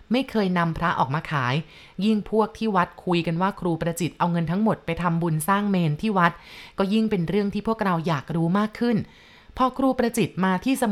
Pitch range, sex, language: 160-200 Hz, female, Thai